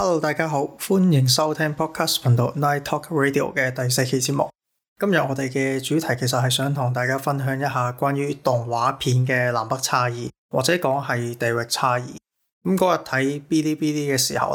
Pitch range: 125-140 Hz